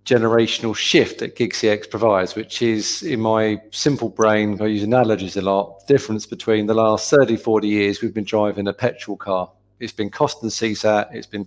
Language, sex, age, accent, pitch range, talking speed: English, male, 40-59, British, 105-125 Hz, 195 wpm